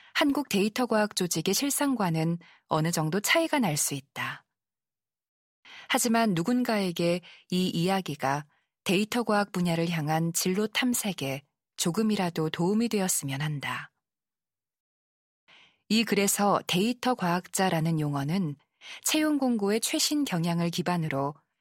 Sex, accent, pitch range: female, native, 165-225 Hz